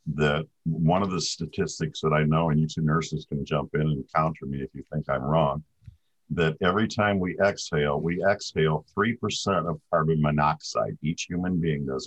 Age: 50-69